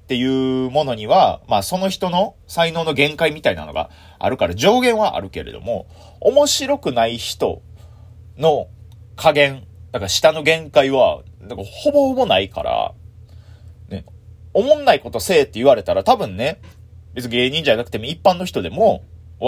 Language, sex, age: Japanese, male, 30-49